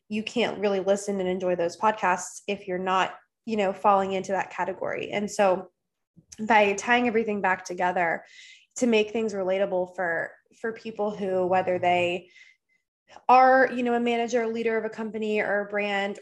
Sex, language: female, English